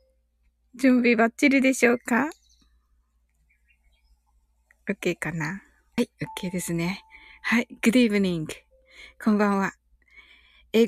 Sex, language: female, Japanese